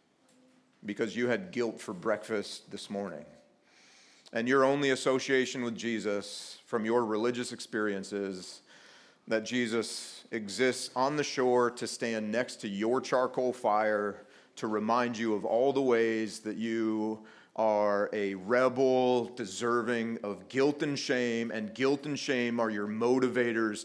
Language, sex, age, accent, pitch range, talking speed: English, male, 40-59, American, 110-135 Hz, 140 wpm